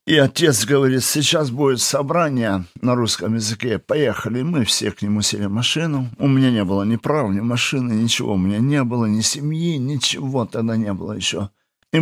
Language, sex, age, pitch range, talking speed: Russian, male, 50-69, 105-130 Hz, 185 wpm